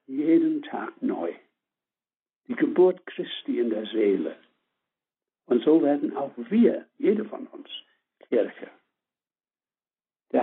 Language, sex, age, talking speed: German, male, 60-79, 110 wpm